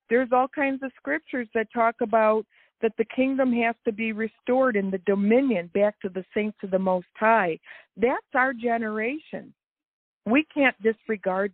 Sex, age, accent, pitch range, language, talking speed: female, 50-69, American, 195-240 Hz, English, 165 wpm